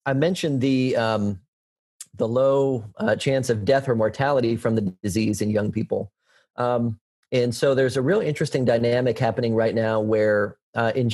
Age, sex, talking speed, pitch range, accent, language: 40-59, male, 170 wpm, 110-130 Hz, American, English